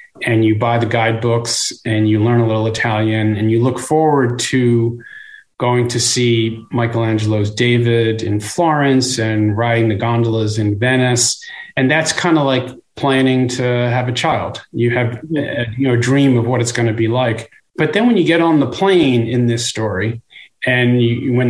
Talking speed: 175 wpm